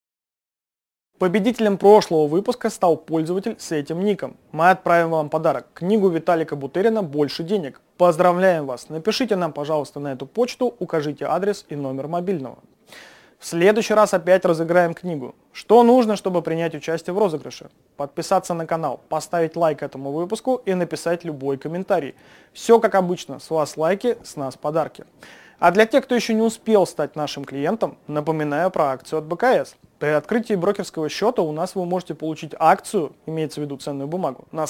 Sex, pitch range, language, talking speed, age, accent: male, 155-205 Hz, Russian, 165 wpm, 30-49, native